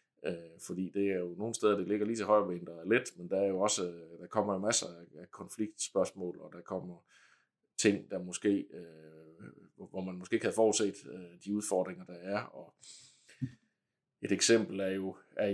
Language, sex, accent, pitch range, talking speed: Danish, male, native, 90-105 Hz, 180 wpm